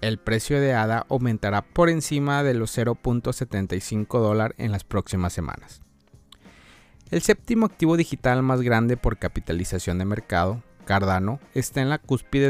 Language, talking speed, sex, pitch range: Spanish, 140 wpm, male, 100-120 Hz